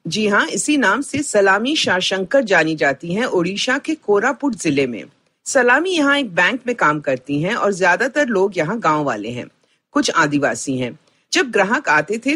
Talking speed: 180 wpm